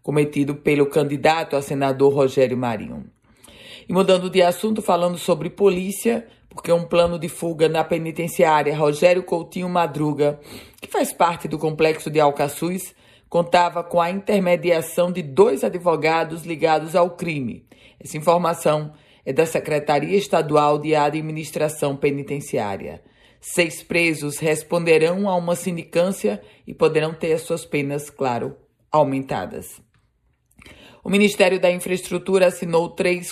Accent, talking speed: Brazilian, 125 wpm